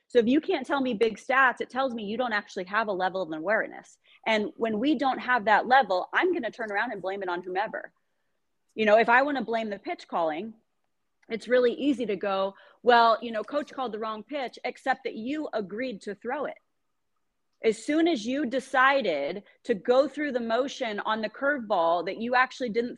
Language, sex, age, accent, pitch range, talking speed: English, female, 30-49, American, 200-260 Hz, 220 wpm